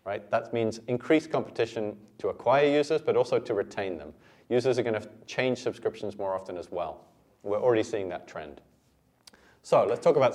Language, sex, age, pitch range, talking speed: English, male, 30-49, 110-140 Hz, 190 wpm